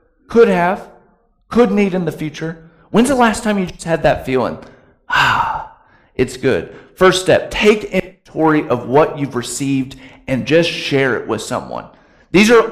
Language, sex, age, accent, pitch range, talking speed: English, male, 40-59, American, 130-180 Hz, 165 wpm